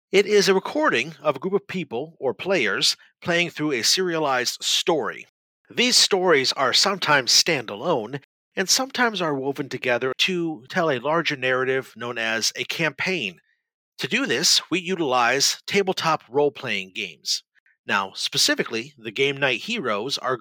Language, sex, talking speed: English, male, 145 wpm